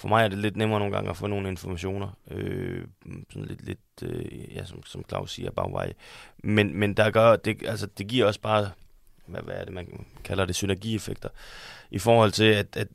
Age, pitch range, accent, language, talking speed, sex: 20-39, 100-115 Hz, native, Danish, 225 wpm, male